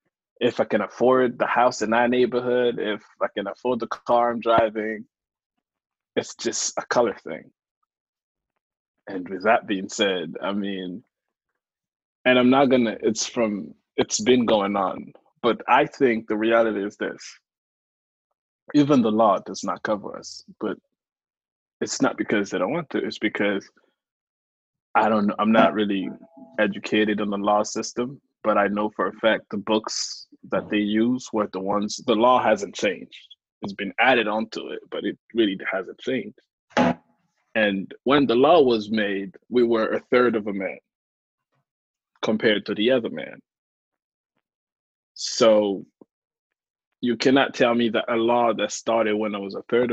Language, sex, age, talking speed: English, male, 20-39, 160 wpm